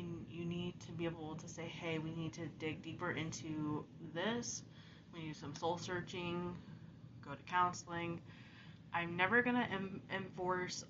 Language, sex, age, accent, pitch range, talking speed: English, female, 20-39, American, 150-170 Hz, 150 wpm